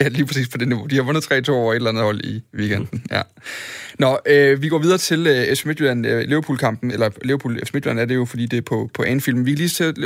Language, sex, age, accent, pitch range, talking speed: Danish, male, 30-49, native, 120-150 Hz, 250 wpm